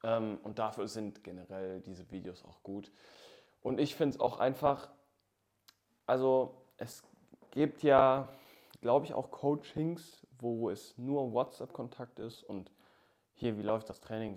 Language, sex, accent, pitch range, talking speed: German, male, German, 100-115 Hz, 140 wpm